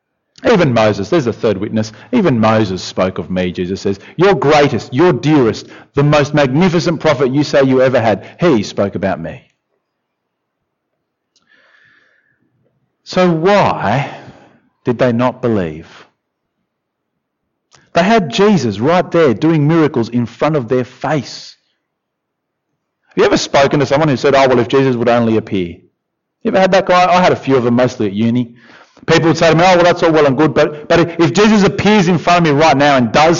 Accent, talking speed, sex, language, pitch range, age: Australian, 185 wpm, male, English, 115-175 Hz, 40-59